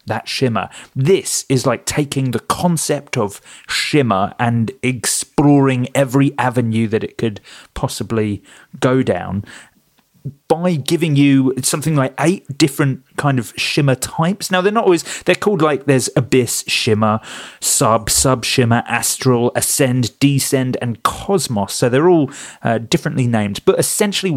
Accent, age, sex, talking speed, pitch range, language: British, 30-49, male, 140 wpm, 115-145 Hz, English